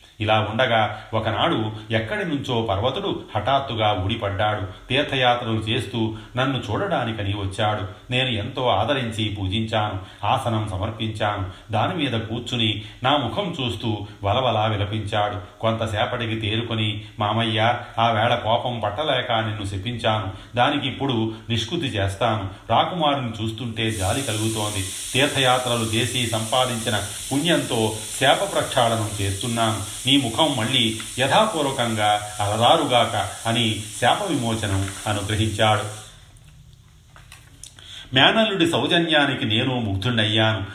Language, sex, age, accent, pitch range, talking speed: Telugu, male, 30-49, native, 105-120 Hz, 90 wpm